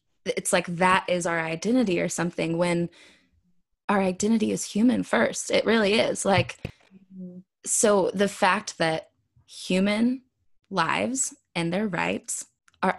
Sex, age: female, 20-39